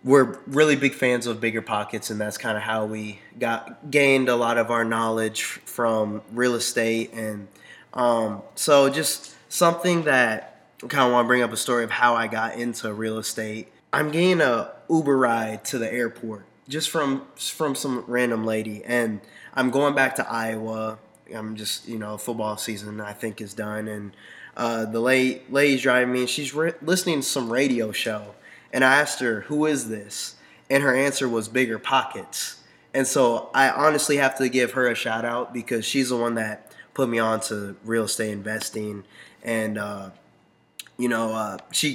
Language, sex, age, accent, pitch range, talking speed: English, male, 20-39, American, 110-130 Hz, 185 wpm